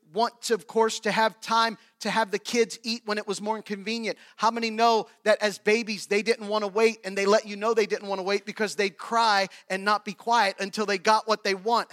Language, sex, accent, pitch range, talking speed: English, male, American, 195-240 Hz, 255 wpm